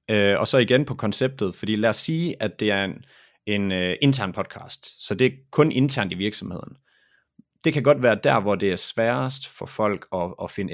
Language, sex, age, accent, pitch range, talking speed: Danish, male, 30-49, native, 100-125 Hz, 220 wpm